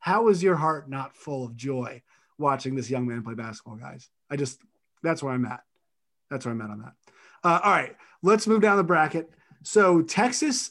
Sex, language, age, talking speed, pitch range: male, English, 30-49, 205 wpm, 130-165 Hz